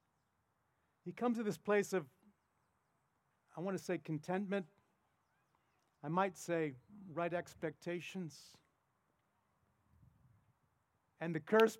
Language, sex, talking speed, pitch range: English, male, 95 wpm, 165-220 Hz